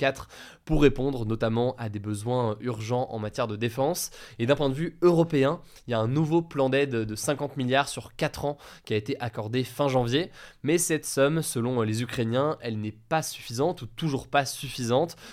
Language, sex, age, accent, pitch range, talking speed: French, male, 20-39, French, 120-150 Hz, 195 wpm